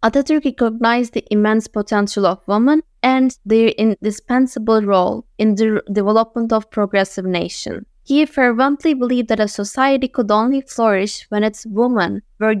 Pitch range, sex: 205-245 Hz, female